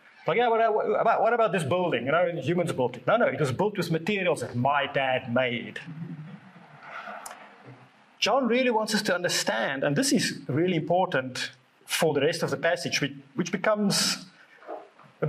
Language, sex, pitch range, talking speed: English, male, 150-215 Hz, 175 wpm